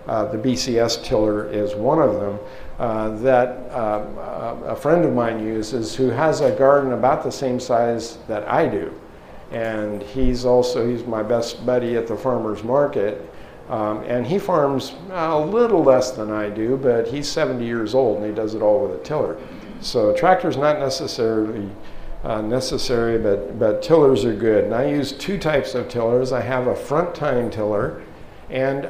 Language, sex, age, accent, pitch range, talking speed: English, male, 50-69, American, 110-135 Hz, 180 wpm